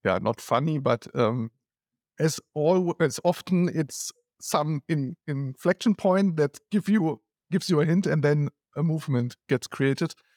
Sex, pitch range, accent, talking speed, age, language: male, 145-185 Hz, German, 160 wpm, 50-69, English